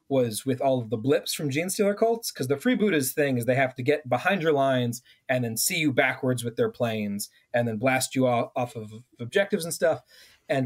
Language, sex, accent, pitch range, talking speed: English, male, American, 120-155 Hz, 230 wpm